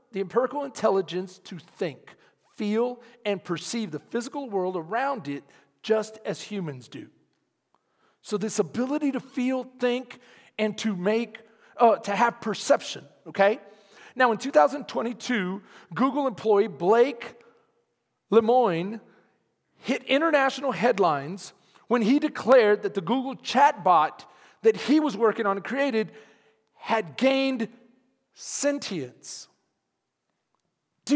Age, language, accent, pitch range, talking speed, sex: 40-59, English, American, 220-290 Hz, 115 wpm, male